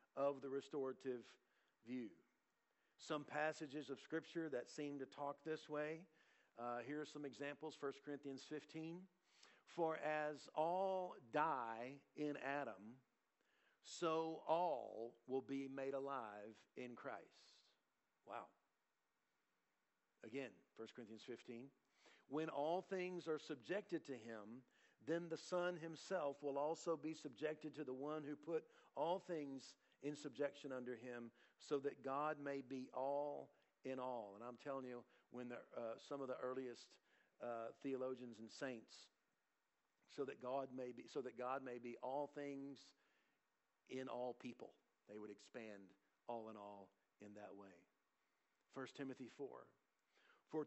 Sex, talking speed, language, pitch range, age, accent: male, 140 wpm, English, 125-155 Hz, 50-69, American